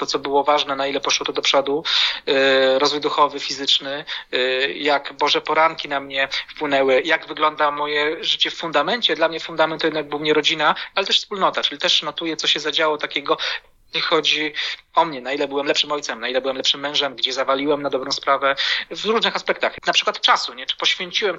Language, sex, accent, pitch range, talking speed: Polish, male, native, 145-175 Hz, 195 wpm